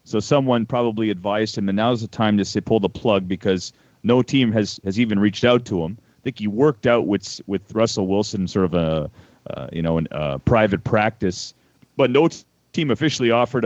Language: English